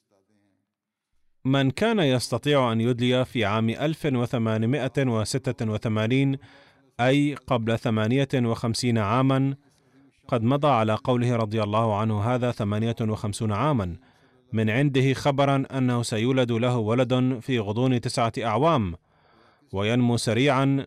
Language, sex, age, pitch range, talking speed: Arabic, male, 30-49, 110-130 Hz, 100 wpm